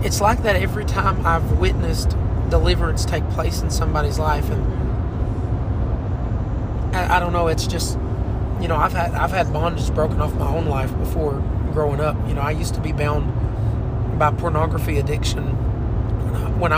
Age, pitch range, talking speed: 30-49, 95-115 Hz, 160 wpm